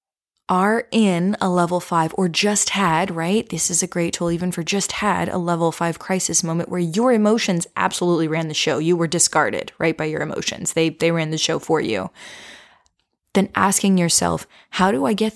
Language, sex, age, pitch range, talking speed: English, female, 20-39, 165-205 Hz, 200 wpm